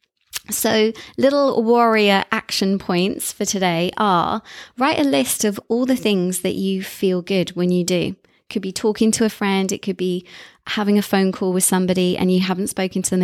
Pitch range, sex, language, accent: 185-220 Hz, female, English, British